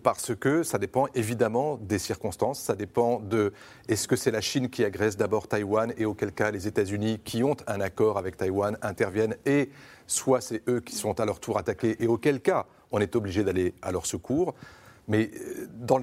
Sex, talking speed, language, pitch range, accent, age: male, 200 wpm, French, 105-130 Hz, French, 40-59